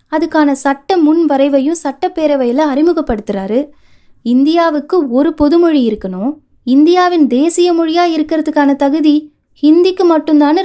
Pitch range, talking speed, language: 245-315 Hz, 95 wpm, Tamil